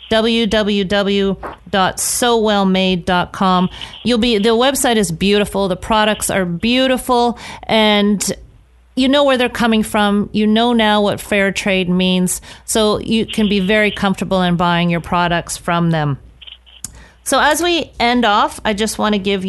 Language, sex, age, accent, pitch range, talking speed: English, female, 40-59, American, 185-230 Hz, 145 wpm